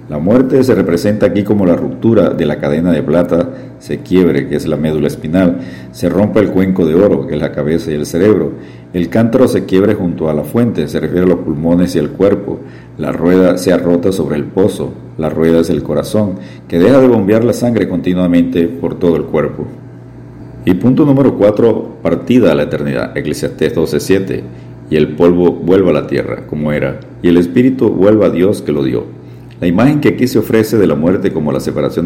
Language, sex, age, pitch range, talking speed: Spanish, male, 50-69, 75-95 Hz, 210 wpm